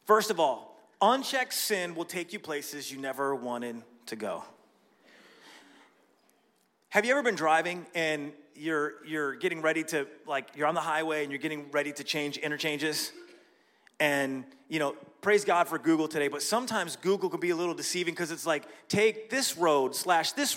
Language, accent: English, American